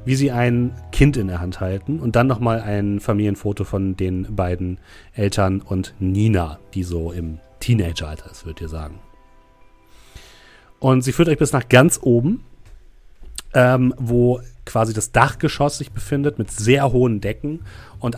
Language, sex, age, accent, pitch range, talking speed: German, male, 30-49, German, 100-125 Hz, 155 wpm